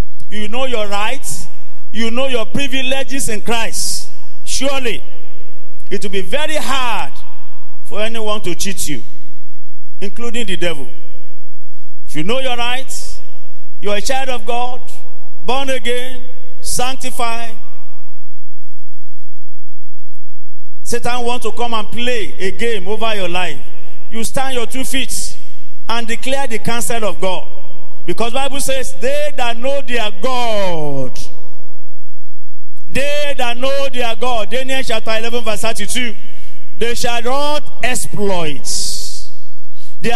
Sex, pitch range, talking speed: male, 180-250 Hz, 125 wpm